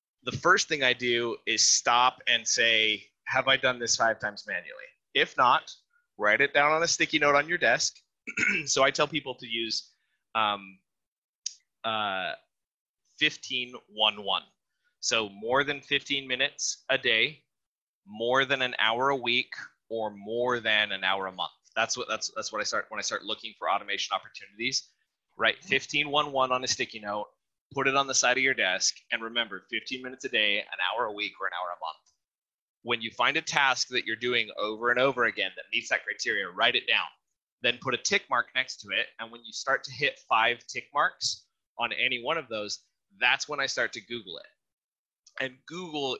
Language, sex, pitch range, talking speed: English, male, 115-140 Hz, 195 wpm